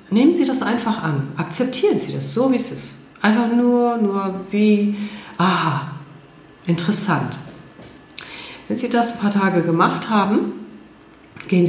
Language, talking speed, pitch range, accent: German, 140 wpm, 175-230 Hz, German